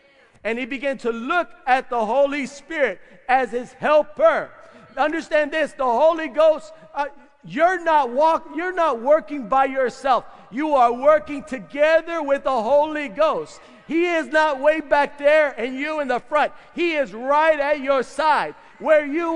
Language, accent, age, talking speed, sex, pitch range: English, American, 50-69, 165 wpm, male, 265-325 Hz